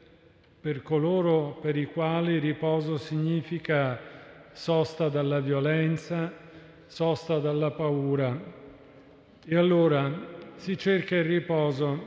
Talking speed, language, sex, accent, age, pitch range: 95 wpm, Italian, male, native, 50-69, 145-175 Hz